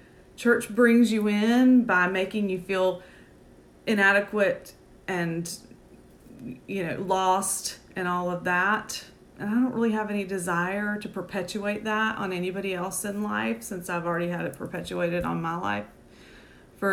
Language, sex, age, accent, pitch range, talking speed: English, female, 30-49, American, 180-215 Hz, 150 wpm